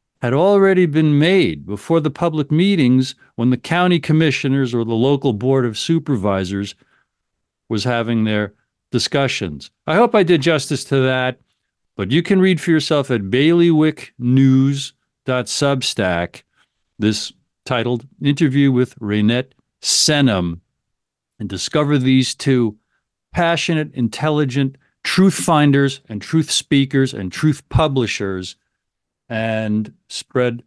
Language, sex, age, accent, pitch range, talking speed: English, male, 50-69, American, 110-150 Hz, 115 wpm